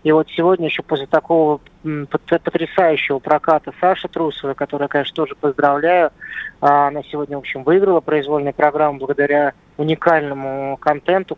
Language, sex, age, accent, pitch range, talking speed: Russian, male, 20-39, native, 145-160 Hz, 125 wpm